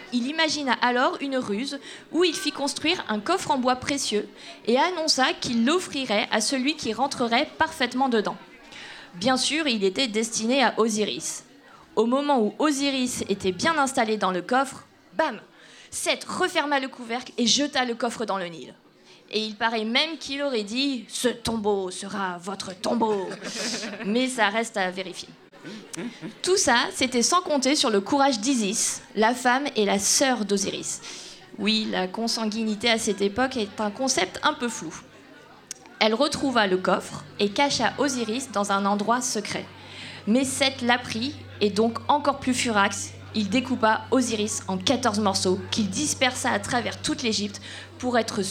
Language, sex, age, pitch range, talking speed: French, female, 20-39, 210-270 Hz, 160 wpm